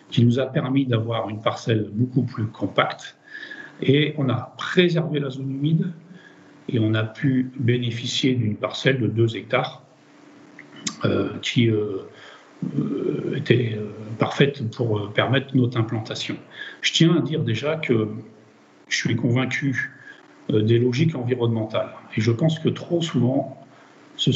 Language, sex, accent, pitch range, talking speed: French, male, French, 115-145 Hz, 145 wpm